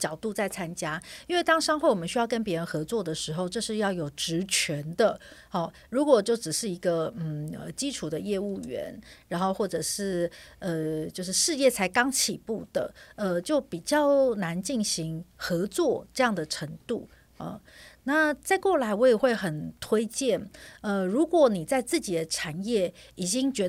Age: 50-69